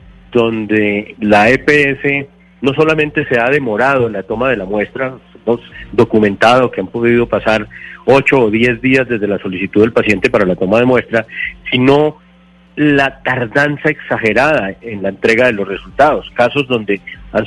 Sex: male